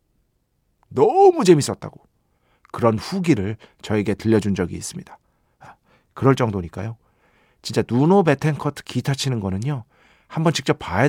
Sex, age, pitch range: male, 40-59, 105-150 Hz